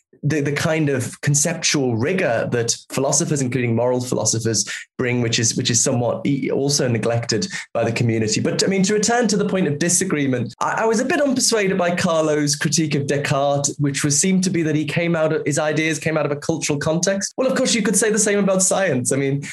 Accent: British